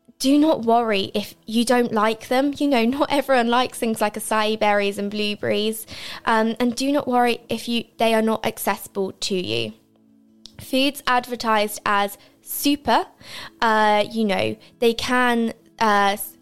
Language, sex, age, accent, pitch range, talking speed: English, female, 20-39, British, 195-235 Hz, 155 wpm